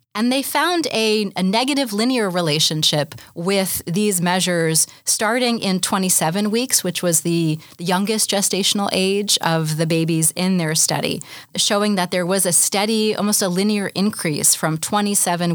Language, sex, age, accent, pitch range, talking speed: English, female, 30-49, American, 160-205 Hz, 150 wpm